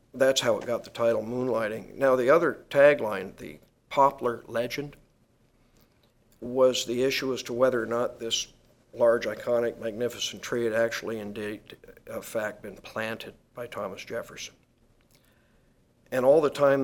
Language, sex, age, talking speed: English, male, 50-69, 145 wpm